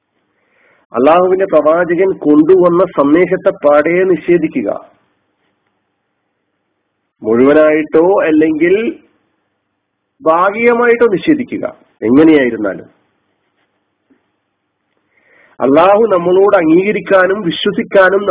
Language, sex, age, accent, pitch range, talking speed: Malayalam, male, 40-59, native, 160-260 Hz, 50 wpm